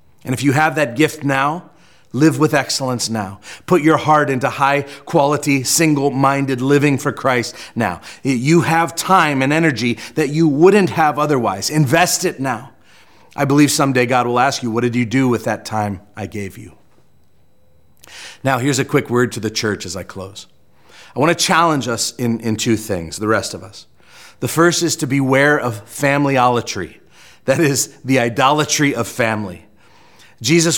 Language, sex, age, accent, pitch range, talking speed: English, male, 40-59, American, 115-150 Hz, 175 wpm